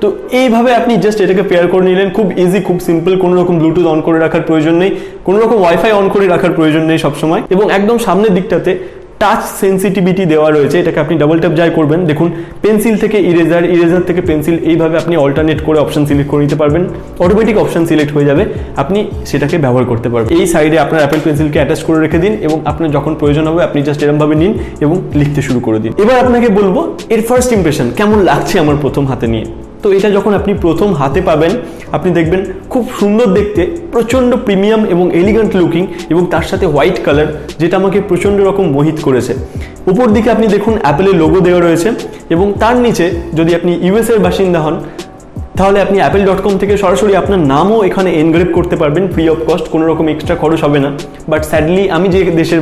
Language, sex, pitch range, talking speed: Bengali, male, 155-195 Hz, 195 wpm